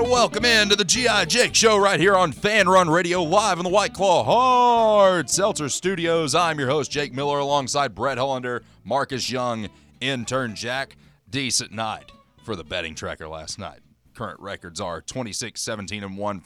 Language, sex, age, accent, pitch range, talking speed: English, male, 30-49, American, 90-140 Hz, 165 wpm